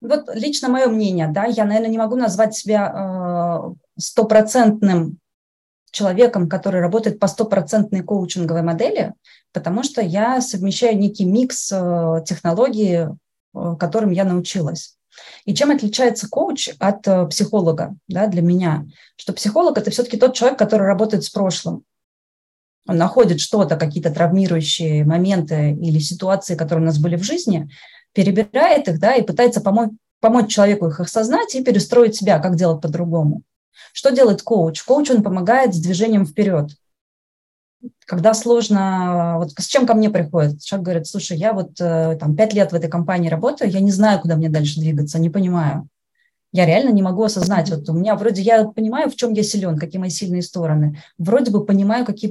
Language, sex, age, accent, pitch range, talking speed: Russian, female, 20-39, native, 170-220 Hz, 160 wpm